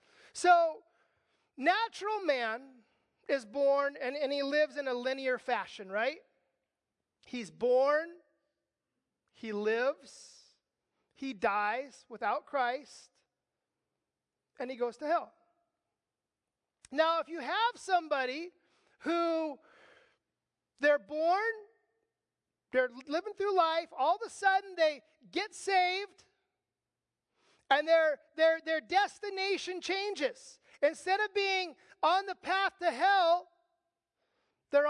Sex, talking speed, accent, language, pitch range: male, 105 wpm, American, English, 285-365 Hz